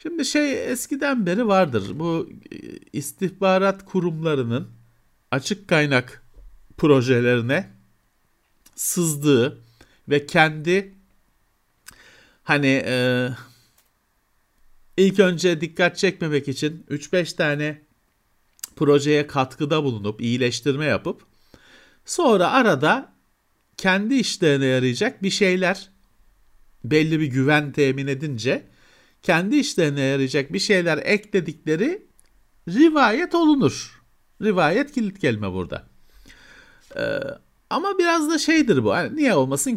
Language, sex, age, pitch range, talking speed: Turkish, male, 50-69, 125-185 Hz, 90 wpm